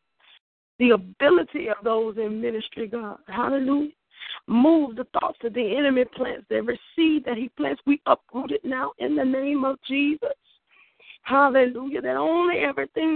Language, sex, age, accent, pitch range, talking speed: English, female, 40-59, American, 245-320 Hz, 150 wpm